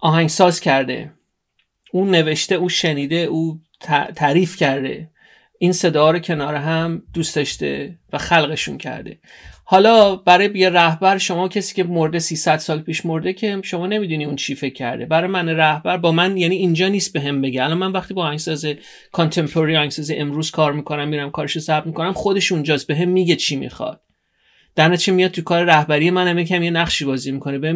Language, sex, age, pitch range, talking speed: Persian, male, 30-49, 145-185 Hz, 185 wpm